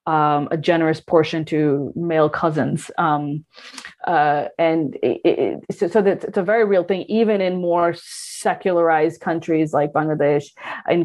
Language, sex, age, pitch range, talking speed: English, female, 30-49, 150-180 Hz, 150 wpm